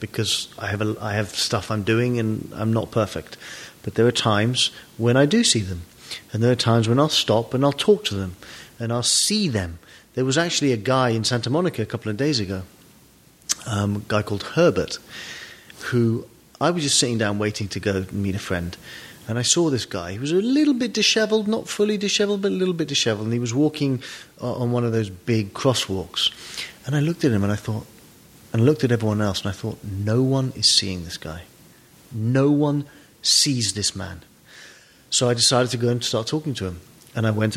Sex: male